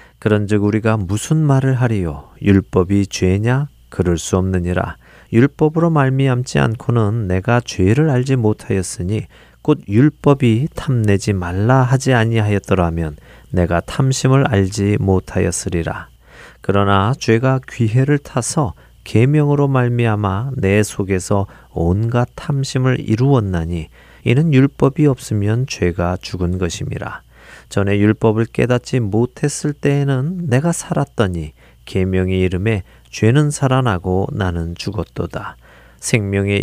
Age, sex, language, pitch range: 40-59, male, Korean, 95-130 Hz